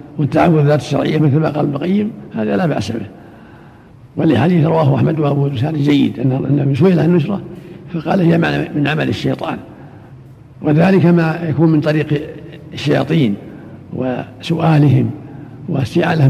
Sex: male